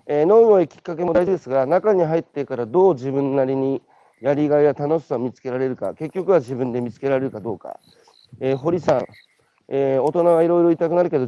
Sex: male